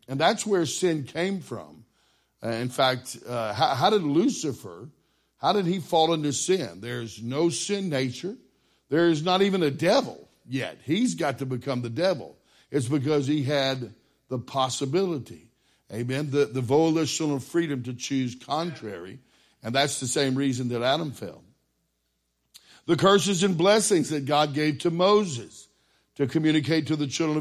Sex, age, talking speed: male, 60-79, 160 wpm